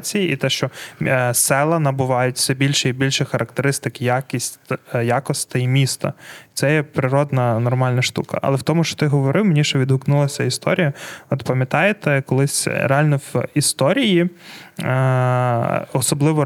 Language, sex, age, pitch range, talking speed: Ukrainian, male, 20-39, 130-150 Hz, 130 wpm